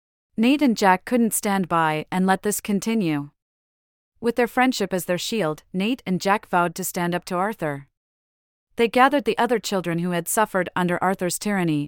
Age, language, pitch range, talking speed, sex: 40-59, English, 160-220 Hz, 180 wpm, female